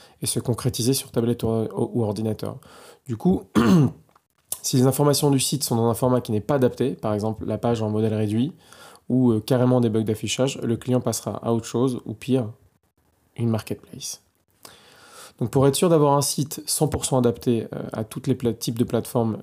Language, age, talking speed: French, 20-39, 180 wpm